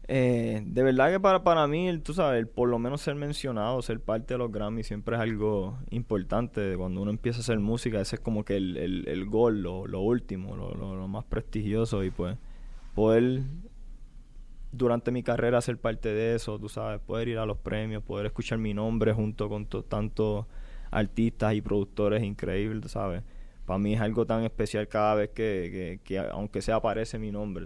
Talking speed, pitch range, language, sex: 200 wpm, 100-115 Hz, Spanish, male